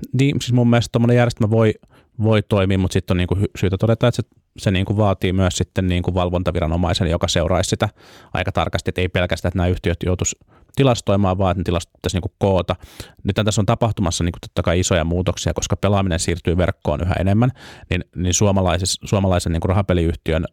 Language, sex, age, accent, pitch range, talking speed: Finnish, male, 30-49, native, 90-105 Hz, 185 wpm